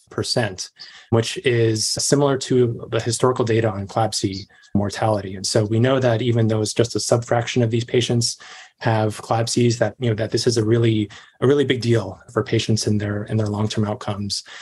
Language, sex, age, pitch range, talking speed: English, male, 20-39, 110-120 Hz, 195 wpm